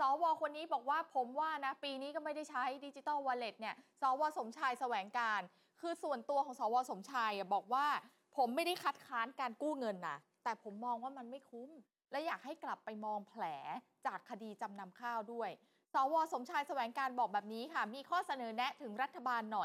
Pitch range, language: 235-300 Hz, Thai